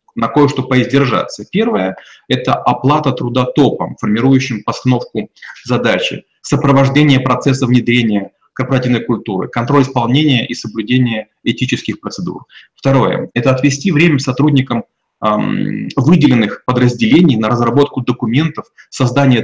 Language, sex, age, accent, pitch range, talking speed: Russian, male, 30-49, native, 115-140 Hz, 100 wpm